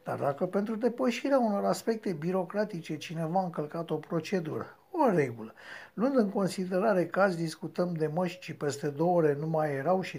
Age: 60-79